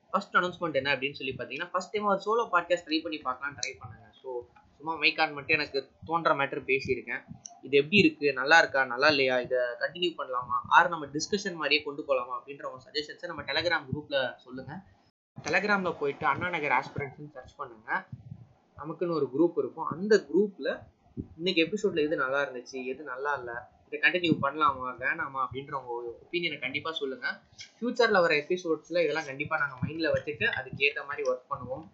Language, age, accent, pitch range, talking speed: Tamil, 20-39, native, 140-185 Hz, 165 wpm